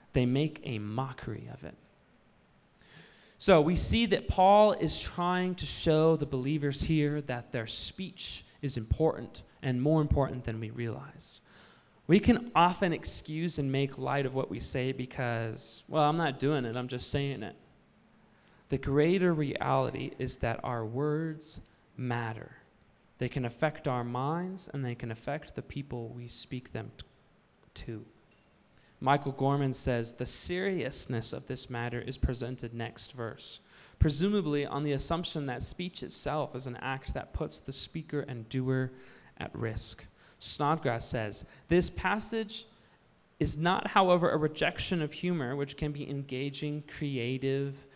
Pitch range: 125-155 Hz